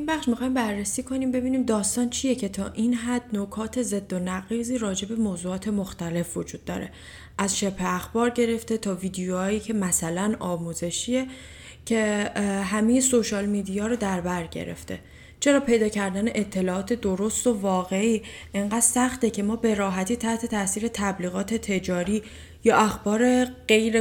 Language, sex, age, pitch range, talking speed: Persian, female, 10-29, 185-230 Hz, 145 wpm